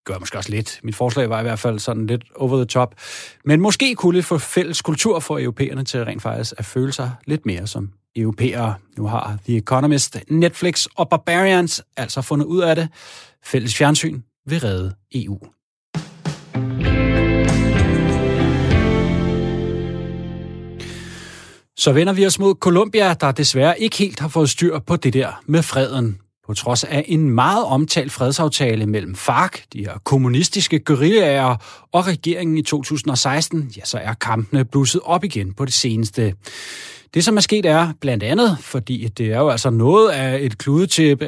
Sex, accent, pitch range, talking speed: male, native, 115-160 Hz, 165 wpm